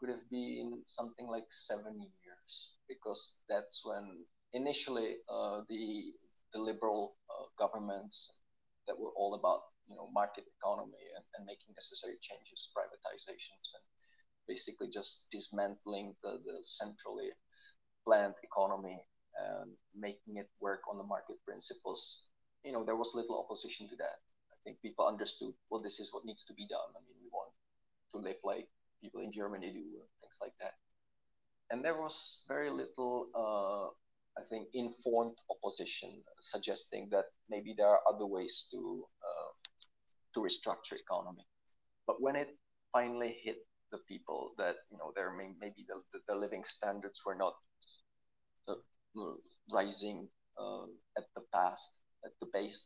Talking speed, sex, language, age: 150 wpm, male, English, 20-39